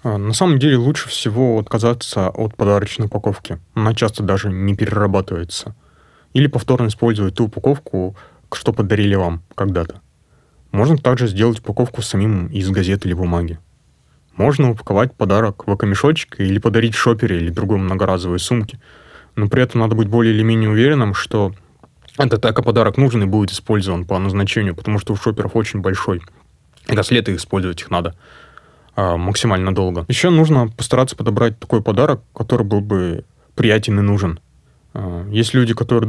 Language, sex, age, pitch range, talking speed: Russian, male, 20-39, 95-115 Hz, 150 wpm